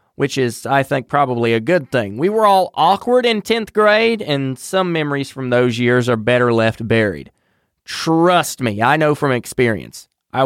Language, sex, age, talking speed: English, male, 30-49, 185 wpm